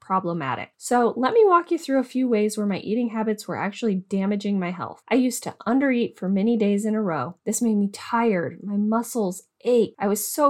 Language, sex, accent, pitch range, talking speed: English, female, American, 190-235 Hz, 225 wpm